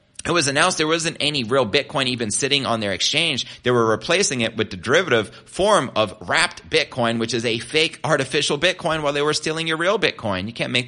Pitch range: 100-130 Hz